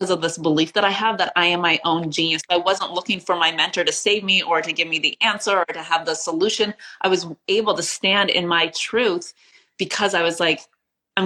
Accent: American